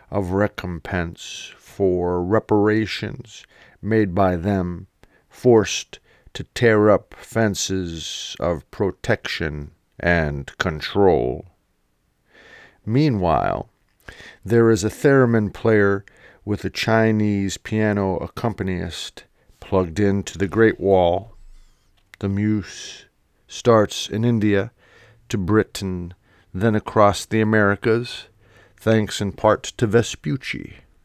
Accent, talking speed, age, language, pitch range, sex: American, 95 wpm, 50-69, English, 90-110 Hz, male